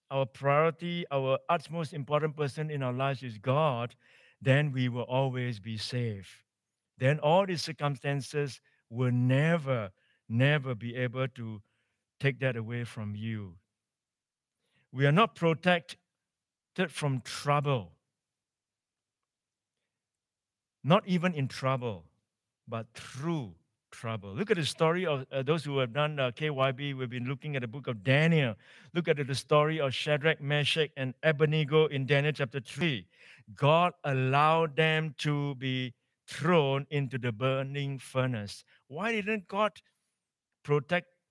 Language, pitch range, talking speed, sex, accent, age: English, 125-160 Hz, 135 wpm, male, Malaysian, 60-79